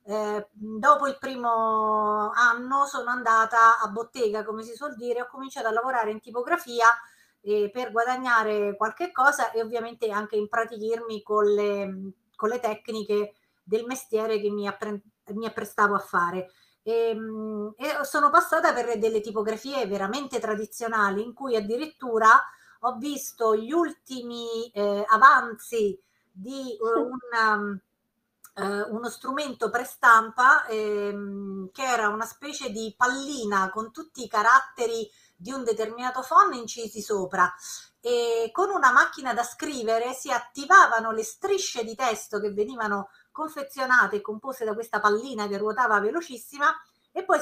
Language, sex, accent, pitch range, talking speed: Italian, female, native, 215-270 Hz, 135 wpm